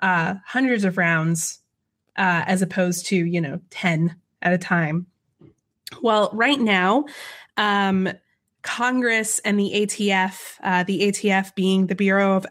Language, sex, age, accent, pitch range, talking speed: English, female, 20-39, American, 185-225 Hz, 140 wpm